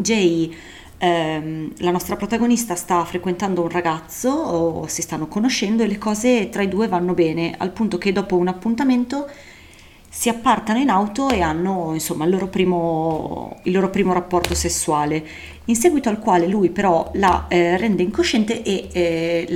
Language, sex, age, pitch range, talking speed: Italian, female, 30-49, 170-225 Hz, 165 wpm